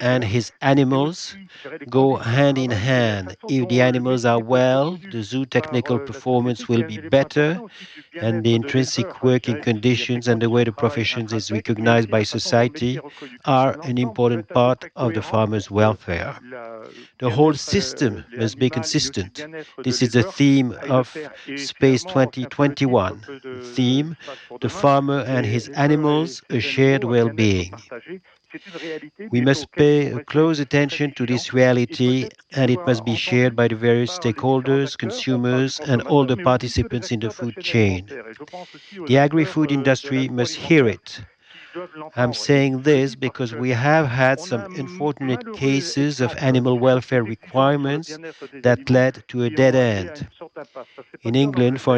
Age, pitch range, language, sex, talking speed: 50-69, 120-140 Hz, French, male, 135 wpm